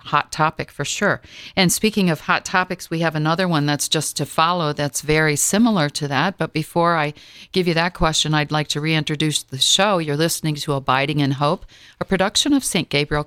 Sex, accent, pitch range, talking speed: female, American, 145-185 Hz, 210 wpm